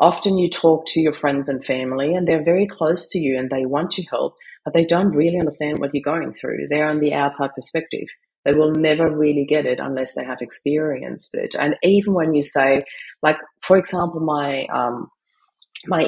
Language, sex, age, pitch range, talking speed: English, female, 30-49, 130-155 Hz, 200 wpm